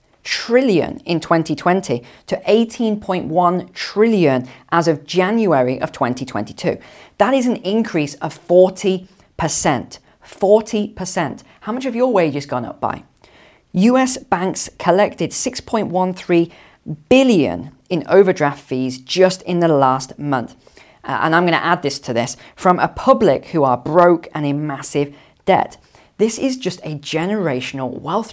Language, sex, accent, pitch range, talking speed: English, female, British, 150-200 Hz, 135 wpm